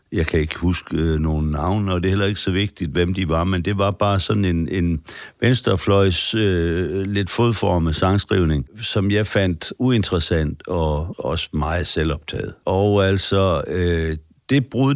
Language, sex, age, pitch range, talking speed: Danish, male, 60-79, 80-100 Hz, 170 wpm